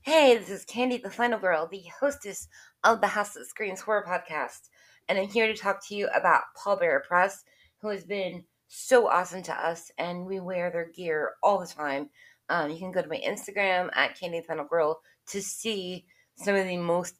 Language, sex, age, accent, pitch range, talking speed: English, female, 20-39, American, 170-220 Hz, 200 wpm